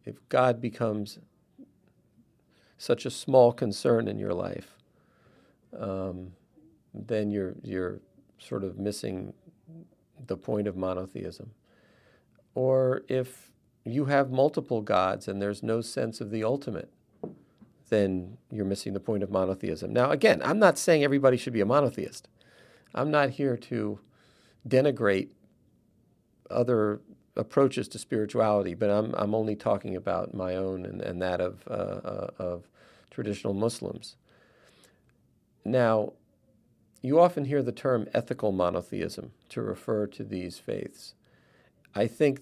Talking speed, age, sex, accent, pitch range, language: 130 wpm, 50-69, male, American, 100-125 Hz, English